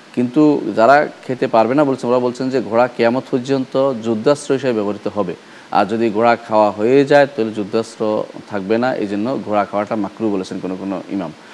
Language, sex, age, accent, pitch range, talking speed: Bengali, male, 40-59, native, 110-145 Hz, 50 wpm